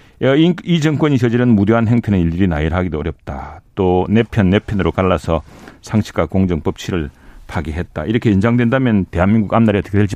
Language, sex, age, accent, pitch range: Korean, male, 40-59, native, 100-145 Hz